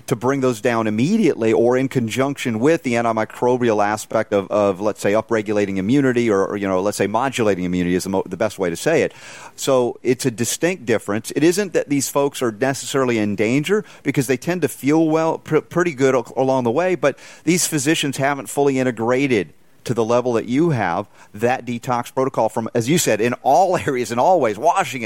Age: 40-59